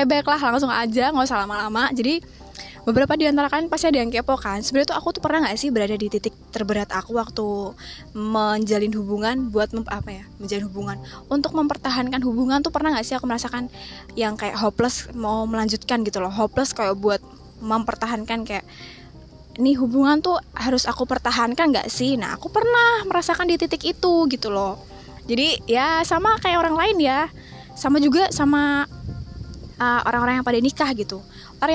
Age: 10-29